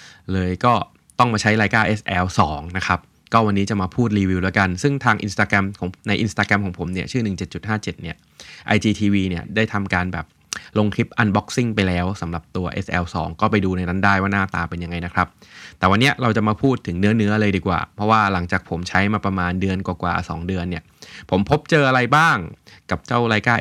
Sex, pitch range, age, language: male, 90-110 Hz, 20-39, Thai